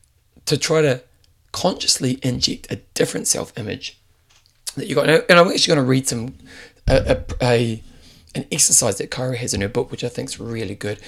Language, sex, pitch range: English, male, 115-145 Hz